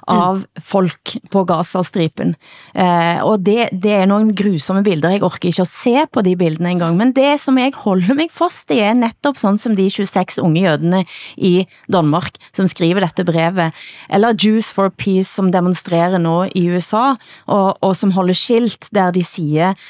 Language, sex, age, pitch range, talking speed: Danish, female, 30-49, 175-215 Hz, 180 wpm